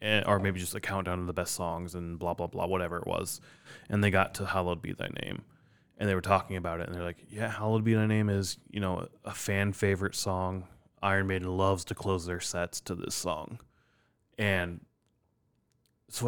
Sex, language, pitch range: male, English, 90-110 Hz